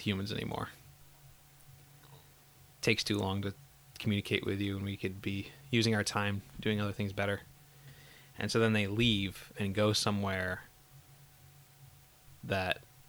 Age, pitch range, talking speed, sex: 20-39, 100-130 Hz, 135 wpm, male